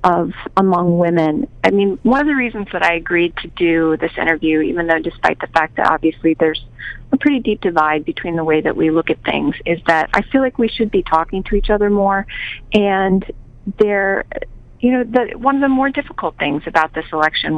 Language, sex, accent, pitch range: English, female, American, 160-205 Hz